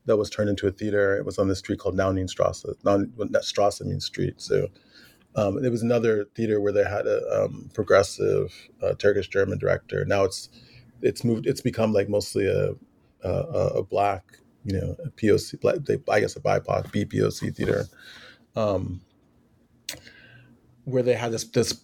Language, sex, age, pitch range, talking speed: English, male, 30-49, 100-120 Hz, 180 wpm